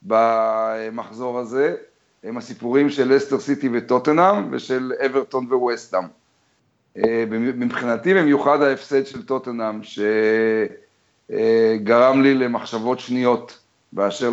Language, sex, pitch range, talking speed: Hebrew, male, 120-135 Hz, 90 wpm